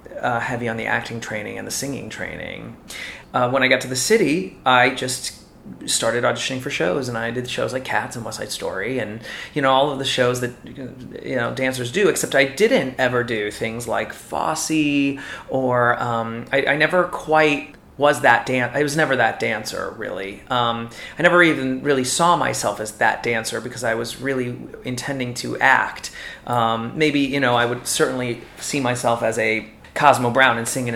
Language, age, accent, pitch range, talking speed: English, 30-49, American, 115-135 Hz, 195 wpm